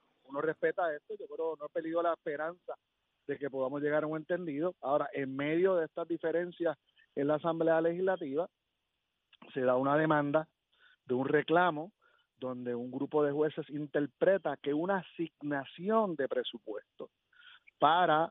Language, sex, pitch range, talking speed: Spanish, male, 135-185 Hz, 150 wpm